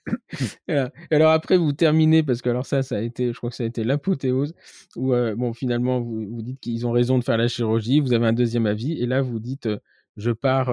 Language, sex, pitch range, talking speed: French, male, 105-130 Hz, 245 wpm